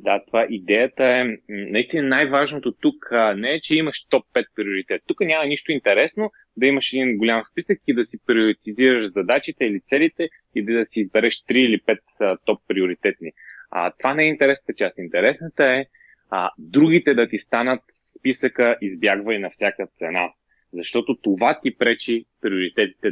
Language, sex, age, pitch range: Bulgarian, male, 20-39, 105-140 Hz